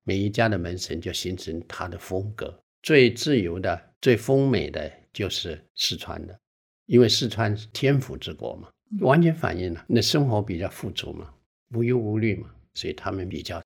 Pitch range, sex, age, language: 90-125 Hz, male, 60-79, Chinese